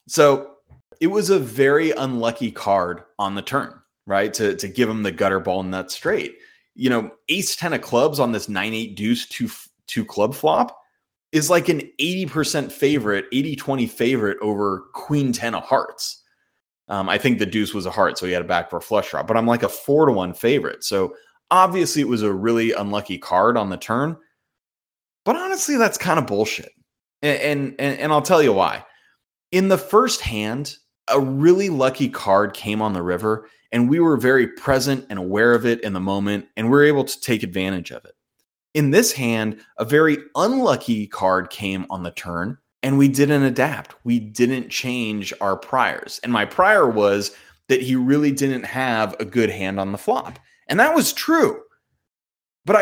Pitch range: 105-150 Hz